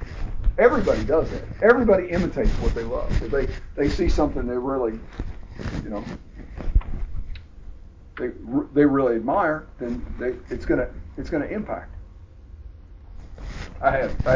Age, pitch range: 40-59, 95-145 Hz